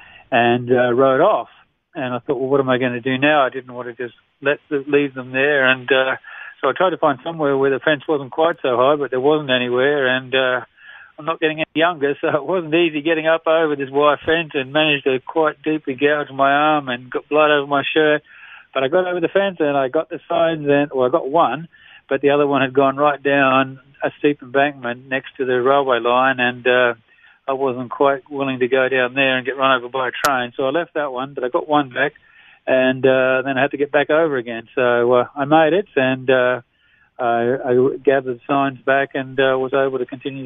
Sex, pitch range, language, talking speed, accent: male, 130-150 Hz, English, 240 wpm, Australian